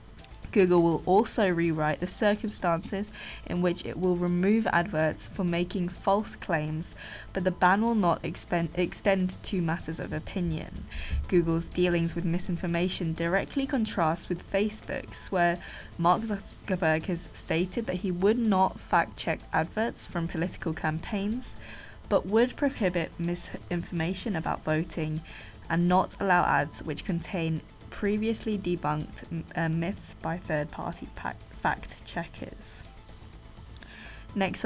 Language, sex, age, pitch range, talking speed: English, female, 10-29, 165-195 Hz, 125 wpm